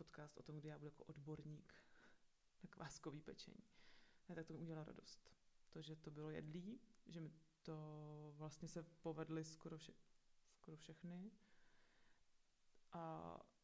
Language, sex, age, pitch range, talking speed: Czech, female, 30-49, 155-180 Hz, 145 wpm